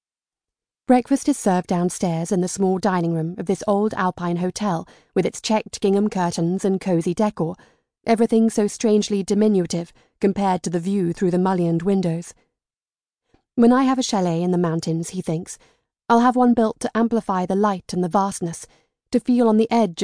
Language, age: English, 30-49